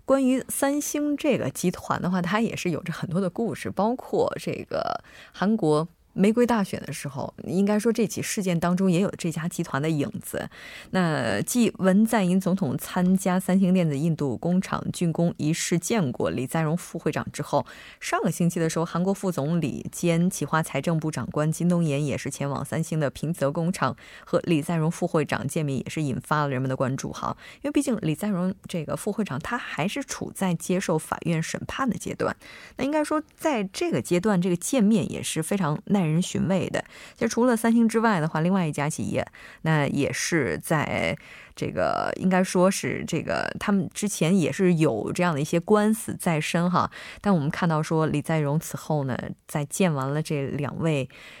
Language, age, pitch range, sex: Korean, 20-39, 155-200 Hz, female